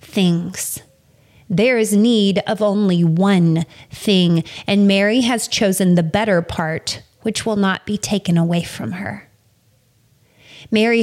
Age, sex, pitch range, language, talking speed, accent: 30-49, female, 175-235 Hz, English, 130 wpm, American